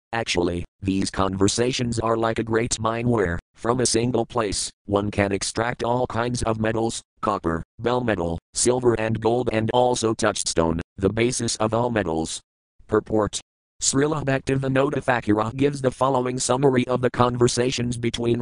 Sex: male